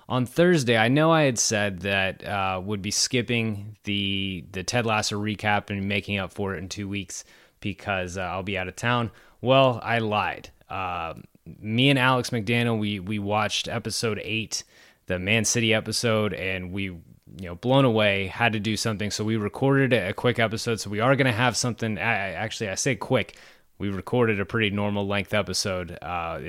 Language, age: English, 20-39